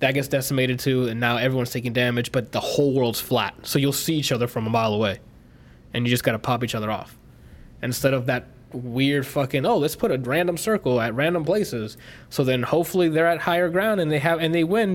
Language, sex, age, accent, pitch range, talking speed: English, male, 20-39, American, 120-145 Hz, 240 wpm